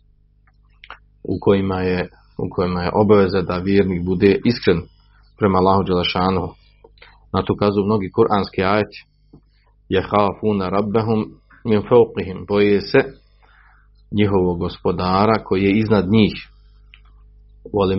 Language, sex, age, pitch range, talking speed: Croatian, male, 40-59, 95-110 Hz, 105 wpm